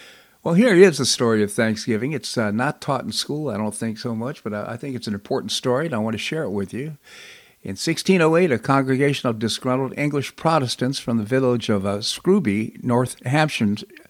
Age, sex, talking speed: 60-79, male, 215 wpm